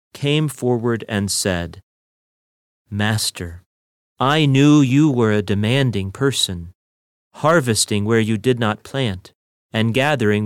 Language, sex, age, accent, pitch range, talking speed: English, male, 40-59, American, 100-145 Hz, 115 wpm